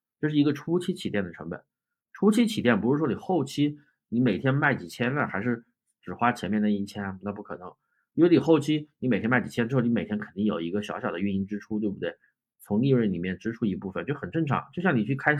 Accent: native